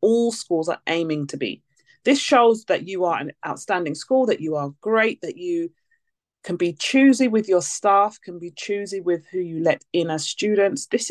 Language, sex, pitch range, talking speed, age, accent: English, female, 170-230 Hz, 200 wpm, 30-49, British